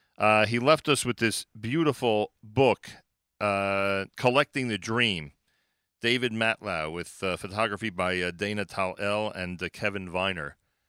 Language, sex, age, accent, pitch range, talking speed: English, male, 40-59, American, 95-115 Hz, 140 wpm